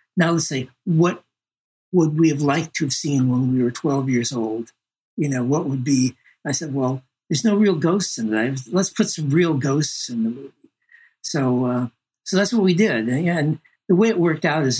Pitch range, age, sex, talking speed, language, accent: 115-160 Hz, 60-79, male, 215 wpm, English, American